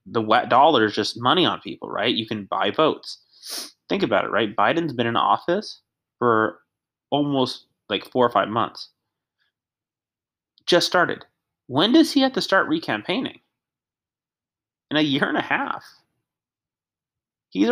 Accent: American